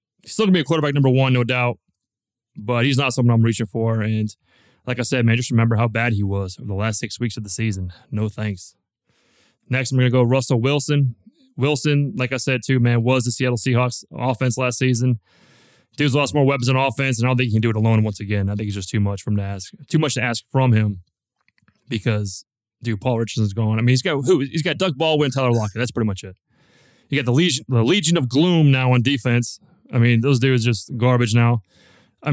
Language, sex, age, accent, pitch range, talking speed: English, male, 20-39, American, 115-150 Hz, 240 wpm